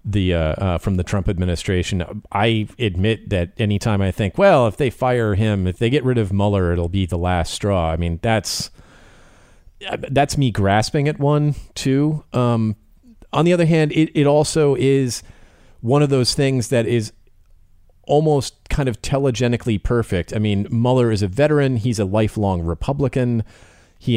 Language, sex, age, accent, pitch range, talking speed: English, male, 40-59, American, 95-120 Hz, 170 wpm